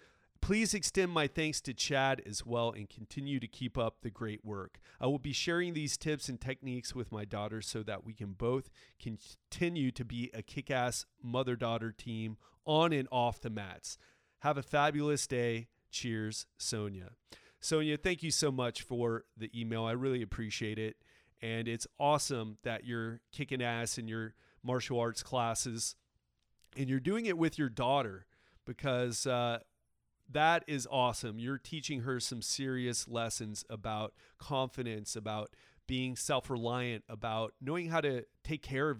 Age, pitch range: 30-49, 115-140 Hz